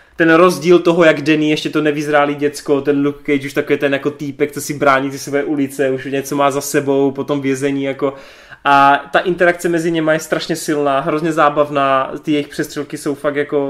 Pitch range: 140-160 Hz